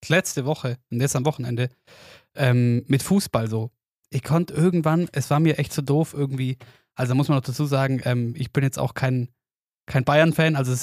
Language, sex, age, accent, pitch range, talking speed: German, male, 20-39, German, 130-155 Hz, 205 wpm